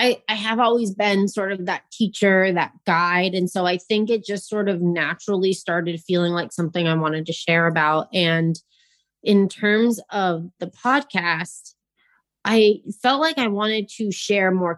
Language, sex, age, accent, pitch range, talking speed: English, female, 20-39, American, 170-205 Hz, 170 wpm